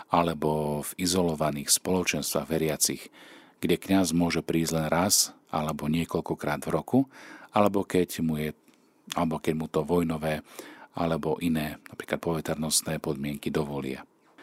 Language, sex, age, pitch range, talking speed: Slovak, male, 40-59, 75-90 Hz, 125 wpm